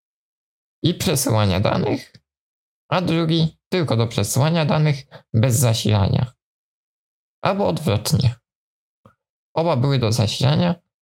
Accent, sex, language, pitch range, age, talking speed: native, male, Polish, 115-150 Hz, 20-39, 95 wpm